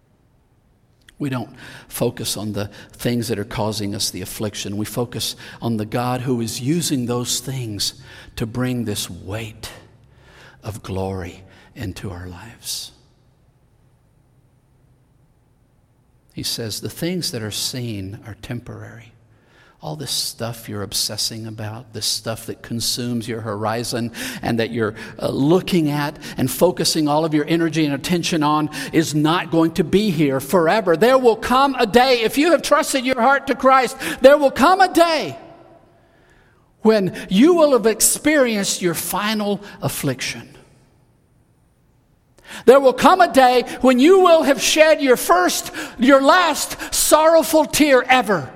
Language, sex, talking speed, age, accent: English, male, 145 wpm, 50-69, American